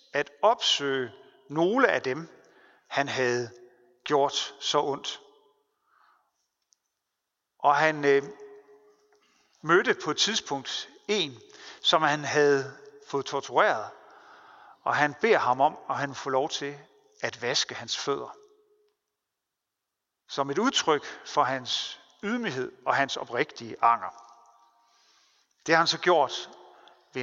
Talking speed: 115 wpm